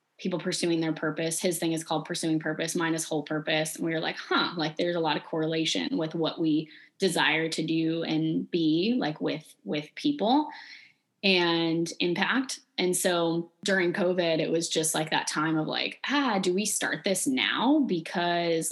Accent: American